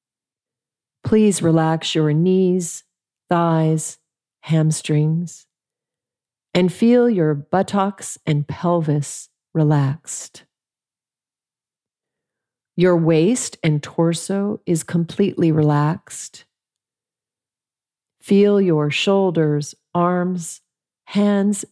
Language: English